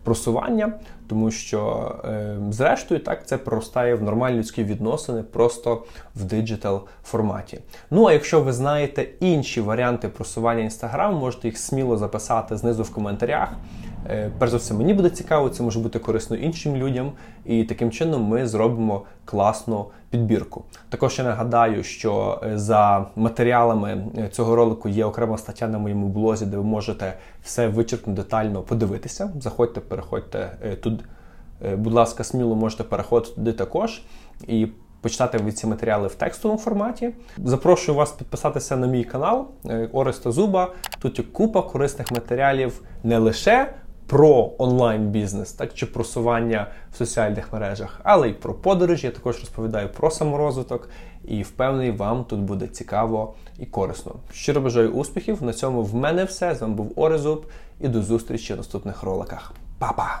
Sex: male